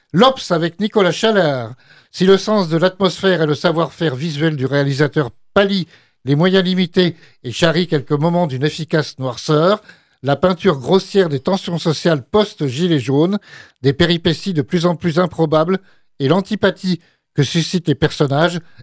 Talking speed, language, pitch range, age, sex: 150 wpm, French, 155-195 Hz, 60-79, male